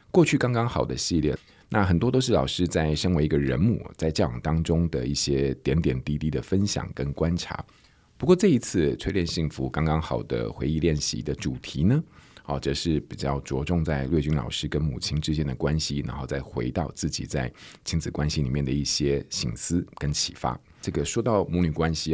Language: Chinese